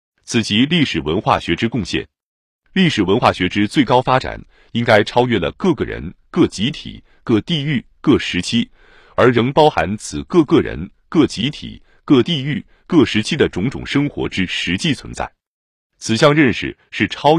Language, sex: Chinese, male